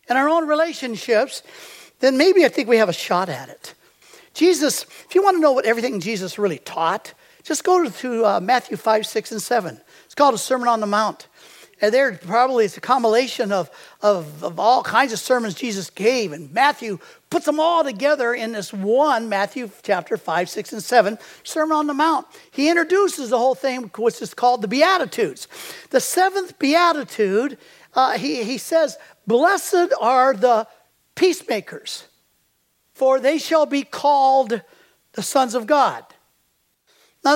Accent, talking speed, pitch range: American, 170 wpm, 220-315 Hz